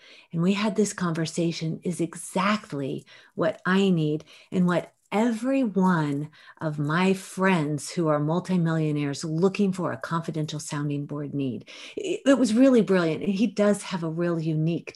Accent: American